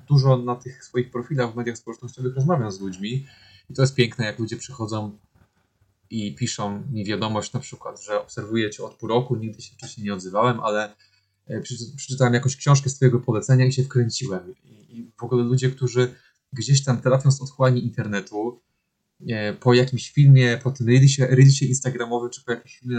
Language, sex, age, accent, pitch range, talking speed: Polish, male, 20-39, native, 110-130 Hz, 175 wpm